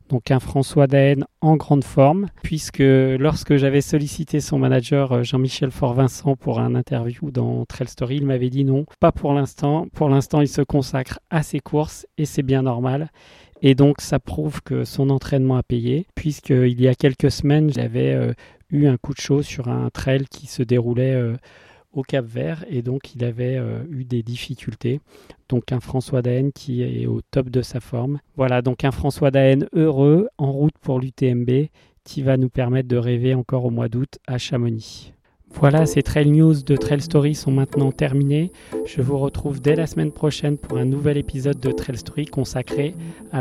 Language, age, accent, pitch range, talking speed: French, 40-59, French, 125-145 Hz, 190 wpm